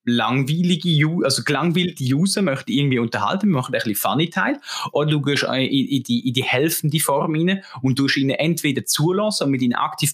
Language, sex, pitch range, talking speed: German, male, 125-160 Hz, 190 wpm